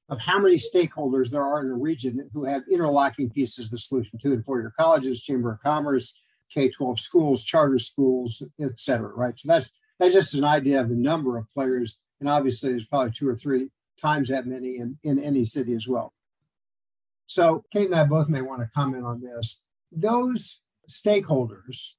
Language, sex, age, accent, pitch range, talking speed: English, male, 50-69, American, 130-165 Hz, 190 wpm